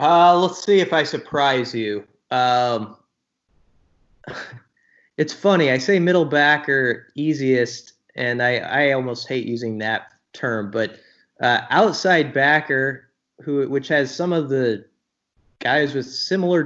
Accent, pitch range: American, 125-155 Hz